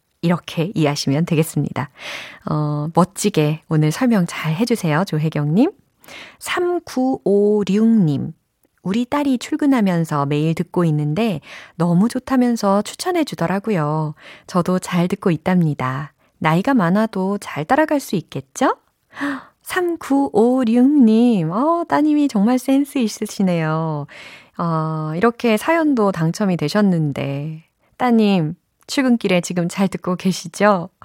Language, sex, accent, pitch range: Korean, female, native, 155-230 Hz